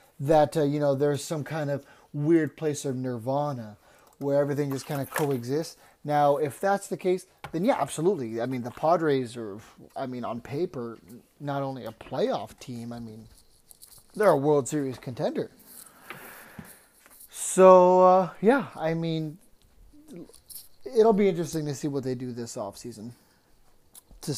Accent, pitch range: American, 130-170 Hz